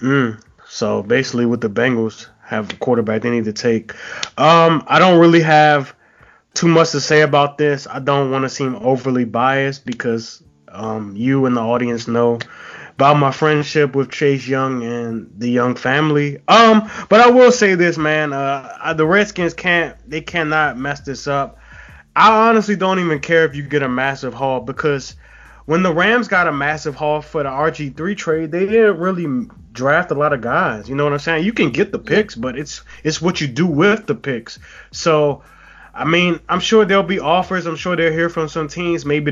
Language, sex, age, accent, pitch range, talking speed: English, male, 20-39, American, 130-165 Hz, 200 wpm